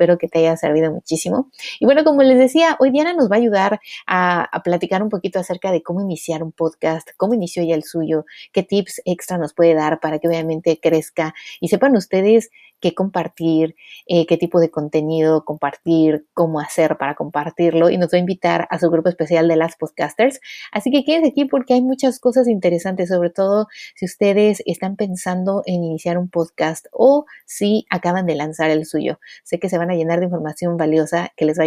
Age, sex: 30-49, female